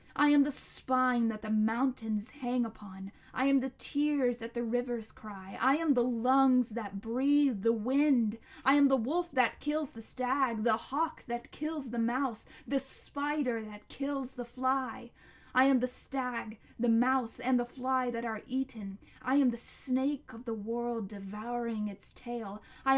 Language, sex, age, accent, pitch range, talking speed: English, female, 10-29, American, 210-260 Hz, 180 wpm